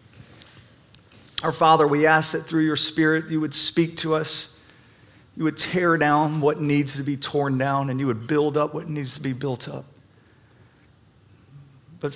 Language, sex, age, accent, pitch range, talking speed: English, male, 40-59, American, 125-155 Hz, 175 wpm